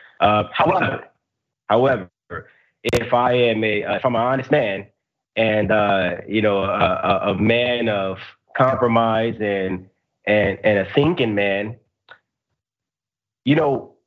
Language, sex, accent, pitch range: English, male, American, 100-125 Hz